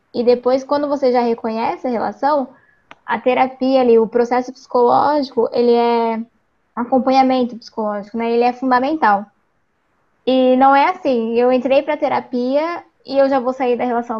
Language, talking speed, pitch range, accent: Portuguese, 155 wpm, 230-275 Hz, Brazilian